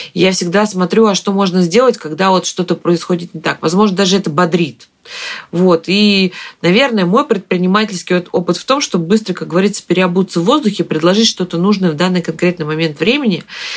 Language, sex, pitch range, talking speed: Russian, female, 175-220 Hz, 175 wpm